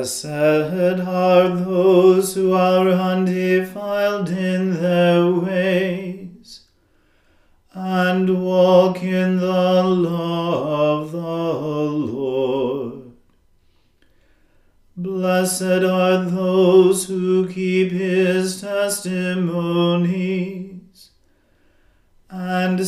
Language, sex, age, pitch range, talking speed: English, male, 40-59, 170-185 Hz, 65 wpm